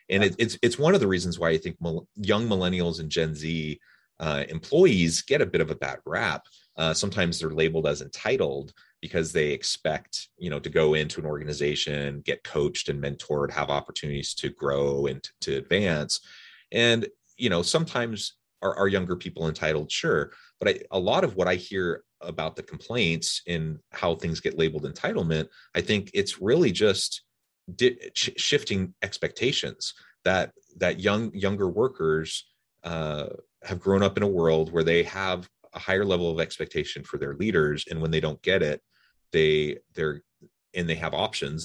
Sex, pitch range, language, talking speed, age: male, 75-95 Hz, English, 180 wpm, 30-49